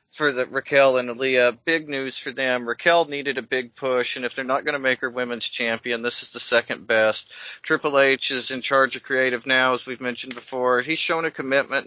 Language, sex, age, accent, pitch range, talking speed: English, male, 40-59, American, 120-150 Hz, 225 wpm